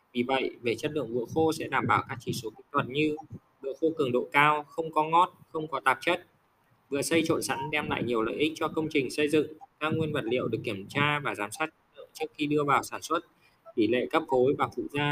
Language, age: Vietnamese, 20-39